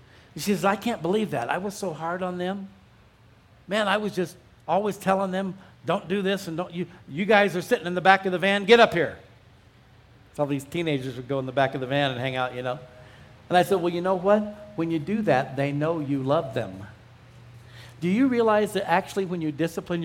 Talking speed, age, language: 235 wpm, 50-69, English